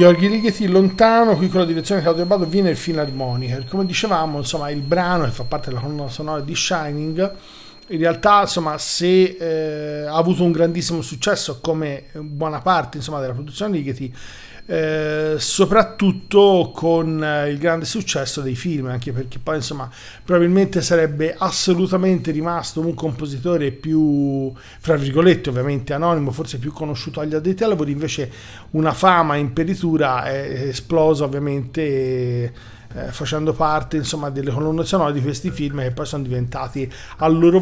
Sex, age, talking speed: male, 40-59, 160 wpm